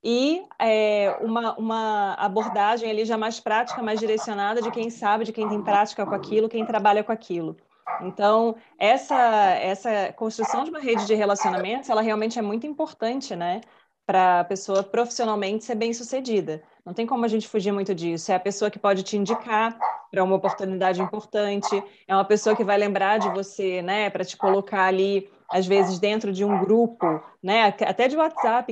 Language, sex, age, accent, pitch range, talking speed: Portuguese, female, 20-39, Brazilian, 195-235 Hz, 185 wpm